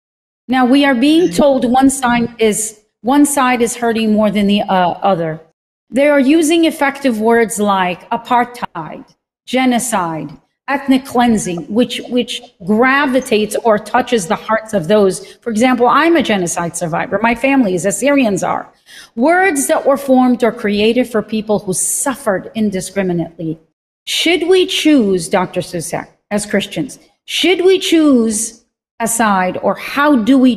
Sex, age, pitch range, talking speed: female, 40-59, 200-270 Hz, 145 wpm